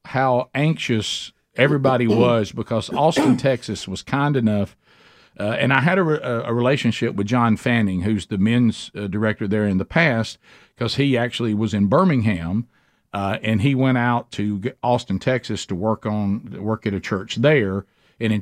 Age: 50-69